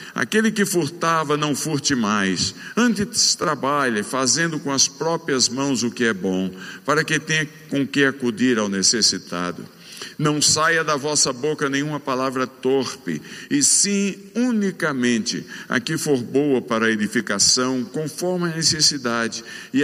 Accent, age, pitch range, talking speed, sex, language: Brazilian, 60-79, 125-165 Hz, 140 wpm, male, Portuguese